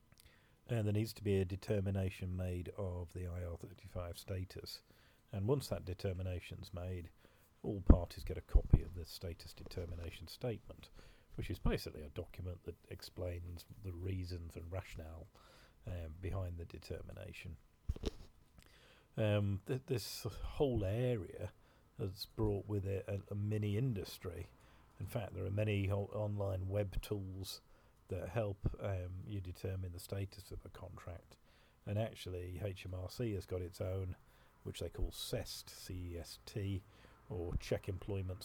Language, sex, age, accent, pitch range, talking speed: English, male, 40-59, British, 90-105 Hz, 140 wpm